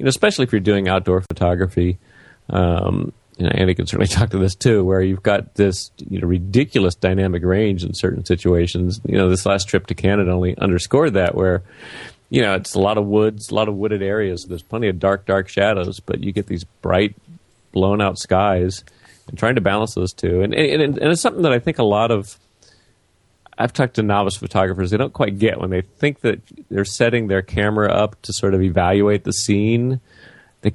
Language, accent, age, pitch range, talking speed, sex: English, American, 40-59, 95-115 Hz, 215 wpm, male